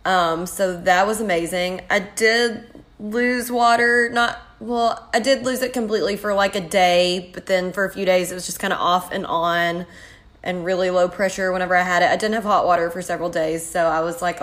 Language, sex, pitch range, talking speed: English, female, 170-200 Hz, 225 wpm